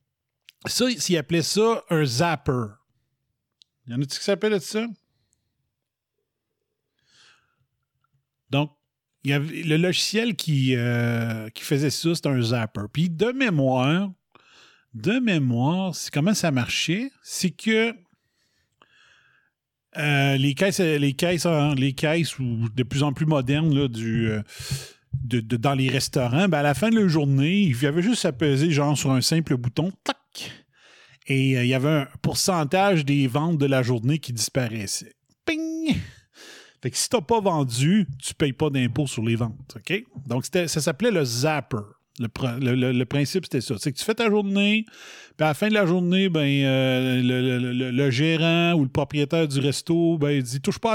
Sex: male